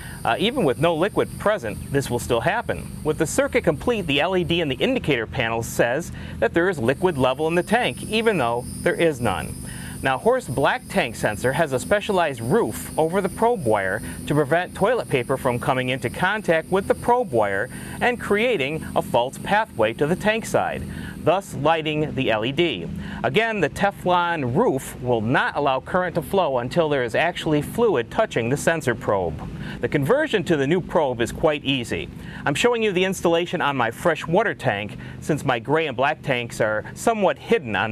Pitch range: 125-185 Hz